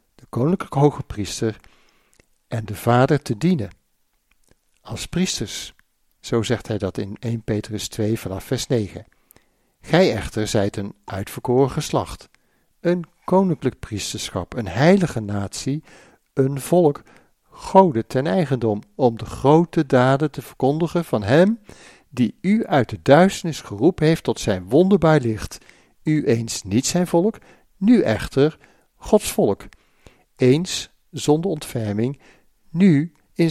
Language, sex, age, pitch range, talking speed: Dutch, male, 60-79, 105-150 Hz, 125 wpm